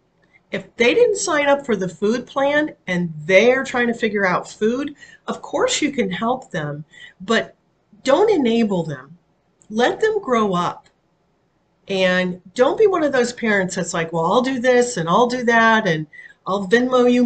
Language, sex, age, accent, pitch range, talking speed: English, female, 40-59, American, 175-245 Hz, 175 wpm